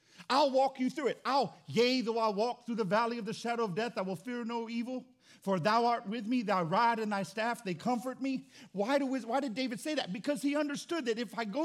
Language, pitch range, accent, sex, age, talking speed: English, 190-255 Hz, American, male, 50-69, 255 wpm